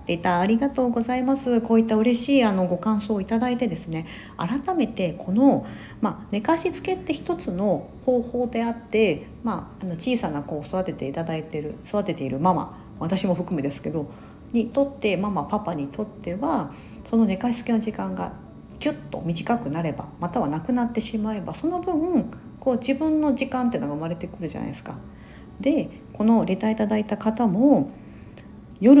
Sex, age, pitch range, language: female, 40-59, 170-255 Hz, Japanese